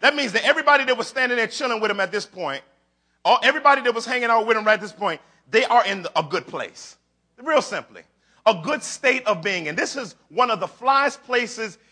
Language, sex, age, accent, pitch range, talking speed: English, male, 40-59, American, 195-265 Hz, 235 wpm